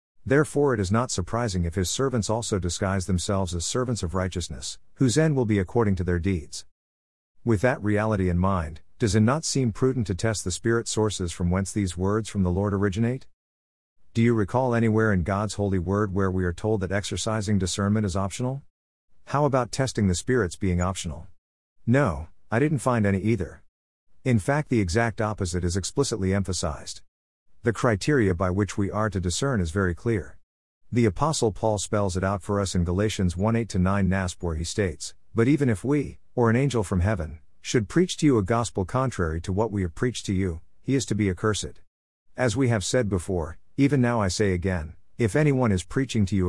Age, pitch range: 50-69, 90-115 Hz